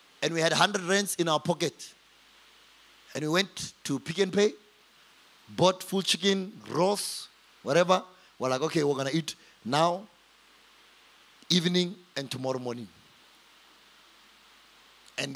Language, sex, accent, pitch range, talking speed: English, male, South African, 150-185 Hz, 130 wpm